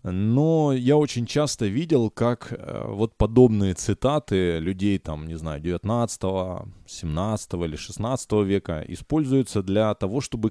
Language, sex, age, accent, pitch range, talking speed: Ukrainian, male, 20-39, native, 100-140 Hz, 110 wpm